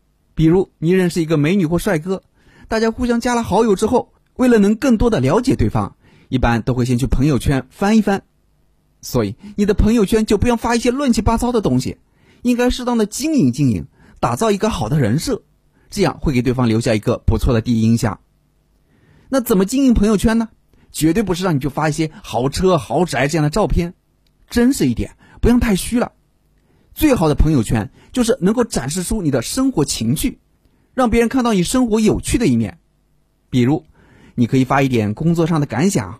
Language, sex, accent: Chinese, male, native